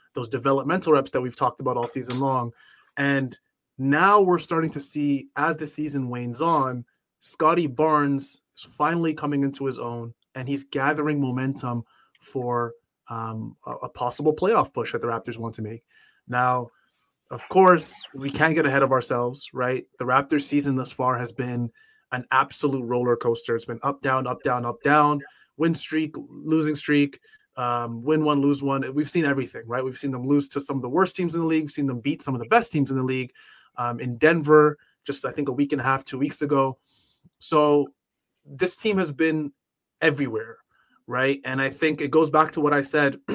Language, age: English, 20-39